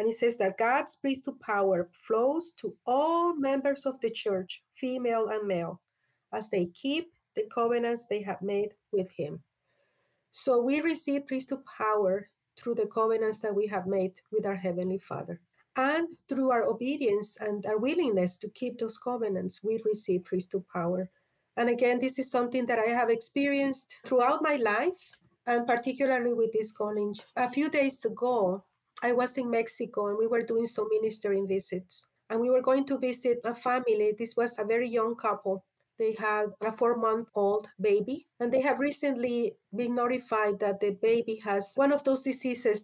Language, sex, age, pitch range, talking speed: English, female, 50-69, 205-255 Hz, 170 wpm